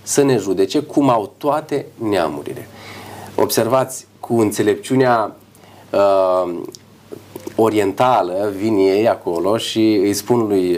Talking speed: 105 wpm